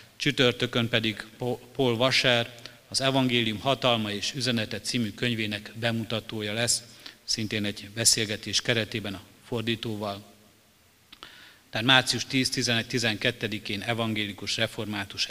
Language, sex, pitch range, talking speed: Hungarian, male, 105-125 Hz, 95 wpm